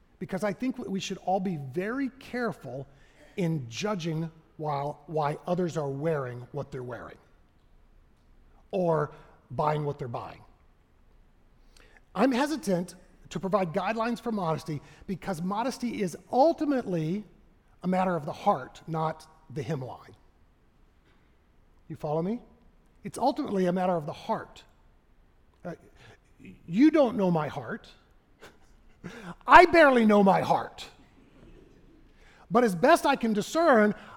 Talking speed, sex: 120 wpm, male